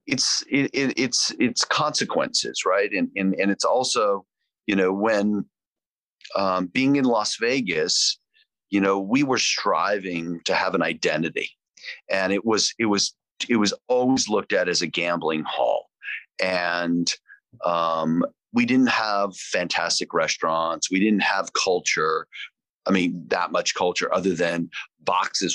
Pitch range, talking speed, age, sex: 90-140 Hz, 145 wpm, 40-59, male